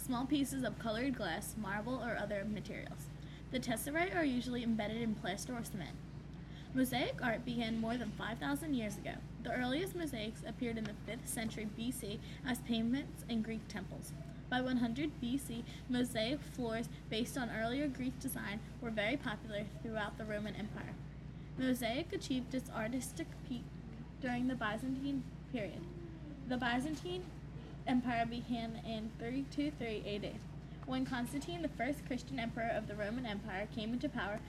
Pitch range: 195-255 Hz